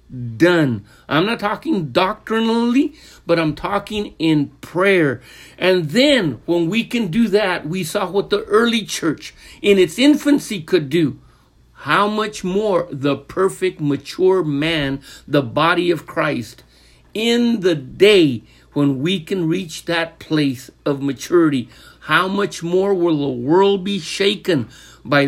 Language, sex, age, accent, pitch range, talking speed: English, male, 60-79, American, 135-195 Hz, 140 wpm